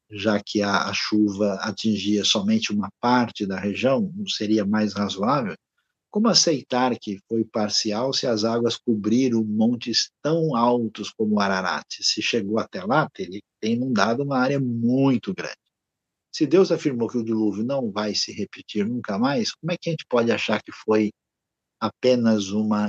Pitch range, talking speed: 110-155 Hz, 165 wpm